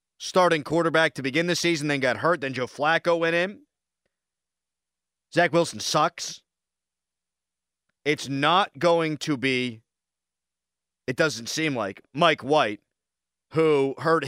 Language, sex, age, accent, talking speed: English, male, 30-49, American, 125 wpm